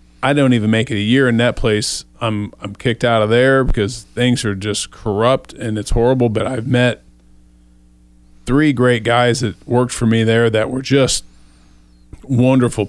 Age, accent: 40-59, American